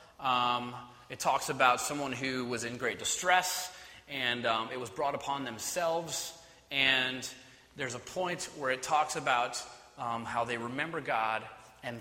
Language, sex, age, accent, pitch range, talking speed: English, male, 30-49, American, 120-150 Hz, 155 wpm